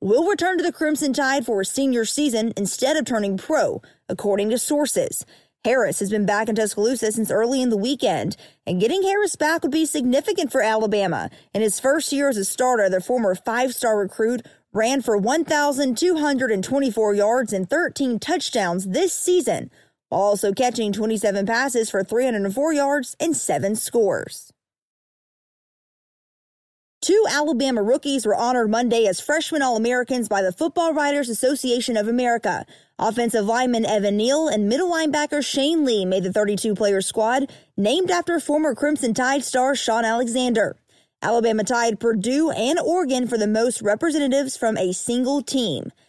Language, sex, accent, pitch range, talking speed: English, female, American, 215-285 Hz, 150 wpm